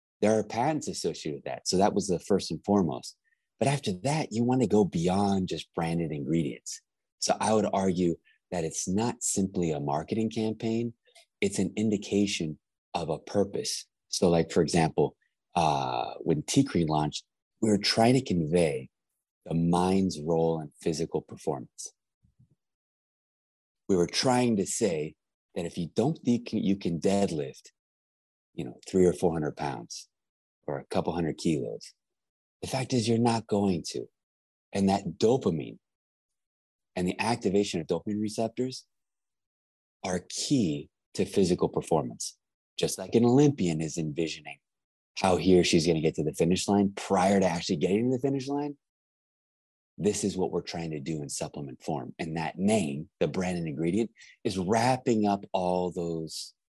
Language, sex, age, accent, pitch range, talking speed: English, male, 30-49, American, 80-115 Hz, 160 wpm